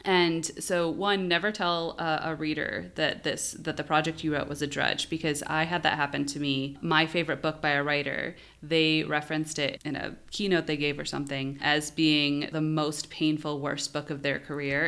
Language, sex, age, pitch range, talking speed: English, female, 30-49, 145-170 Hz, 200 wpm